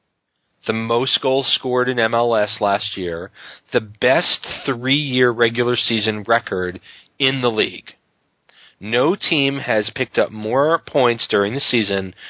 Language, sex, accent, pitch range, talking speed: English, male, American, 110-135 Hz, 130 wpm